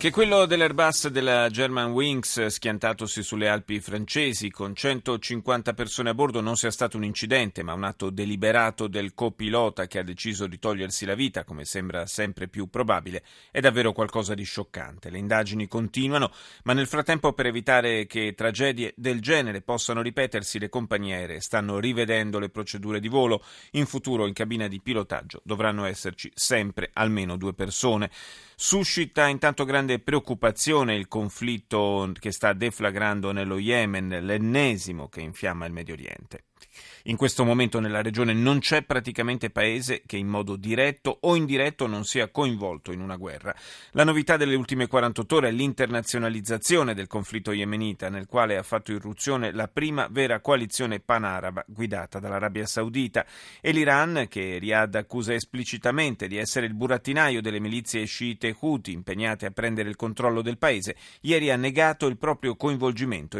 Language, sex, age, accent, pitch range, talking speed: Italian, male, 30-49, native, 105-130 Hz, 160 wpm